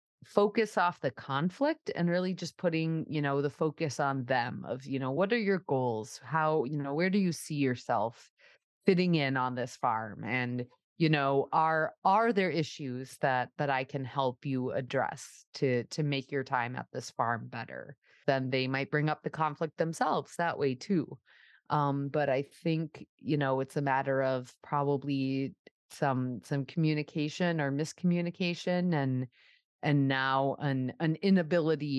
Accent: American